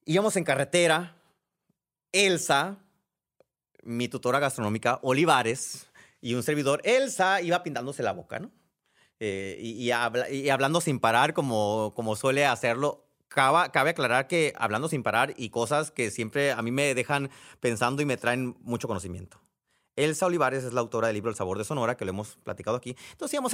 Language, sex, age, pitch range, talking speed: Spanish, male, 30-49, 120-175 Hz, 175 wpm